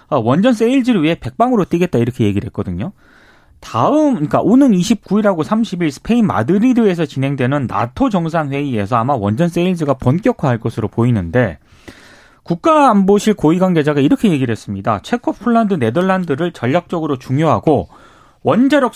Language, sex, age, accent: Korean, male, 30-49, native